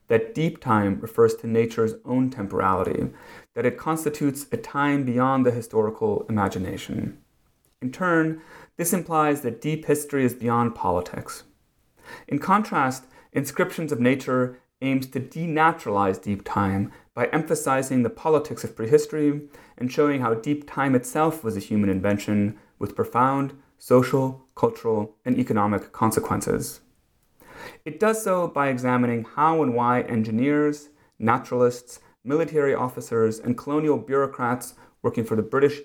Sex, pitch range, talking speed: male, 110-145 Hz, 130 wpm